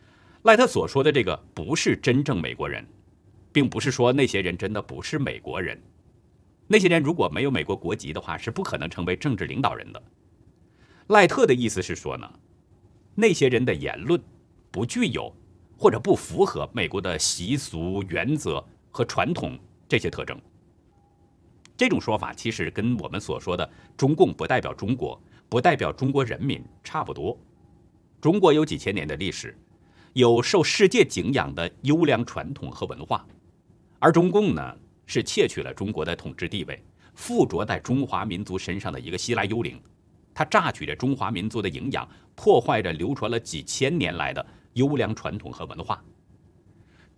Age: 50-69